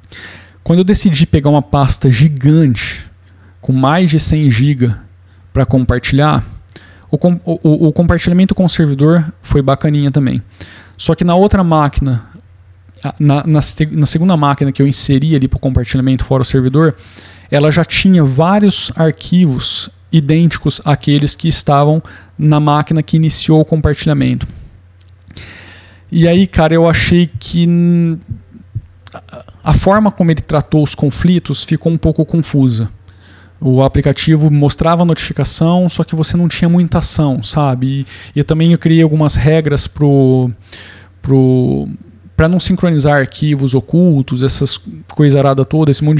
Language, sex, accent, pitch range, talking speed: Portuguese, male, Brazilian, 125-160 Hz, 140 wpm